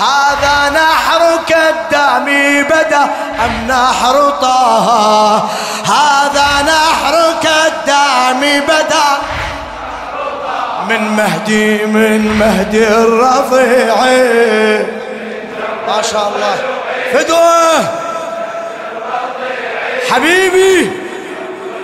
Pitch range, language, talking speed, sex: 250-315 Hz, Arabic, 50 wpm, male